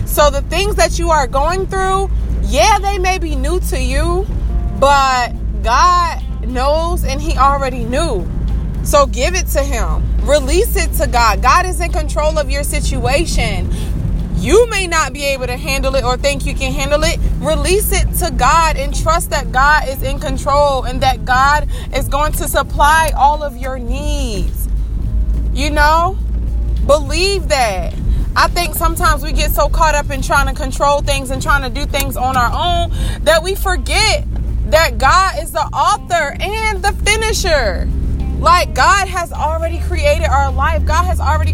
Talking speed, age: 175 wpm, 20-39